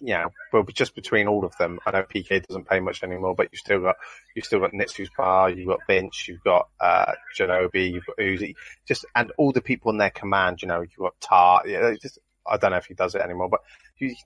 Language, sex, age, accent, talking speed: English, male, 30-49, British, 255 wpm